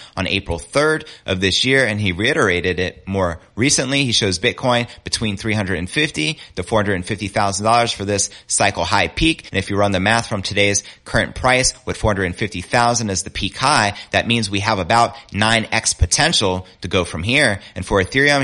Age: 30-49